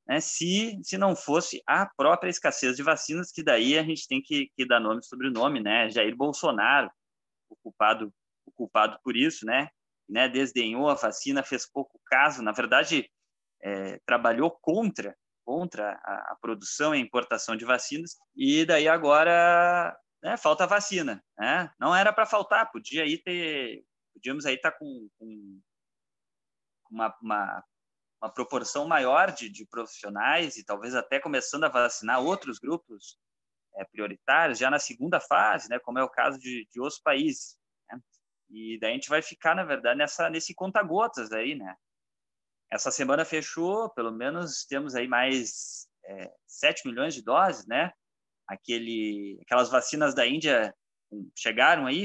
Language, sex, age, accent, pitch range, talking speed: Portuguese, male, 20-39, Brazilian, 115-170 Hz, 160 wpm